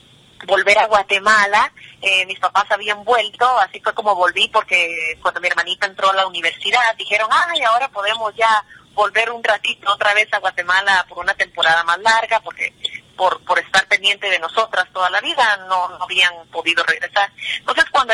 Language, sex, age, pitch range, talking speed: Spanish, female, 30-49, 190-250 Hz, 180 wpm